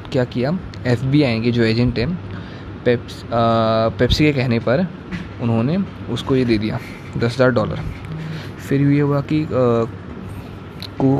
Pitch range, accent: 110-130 Hz, native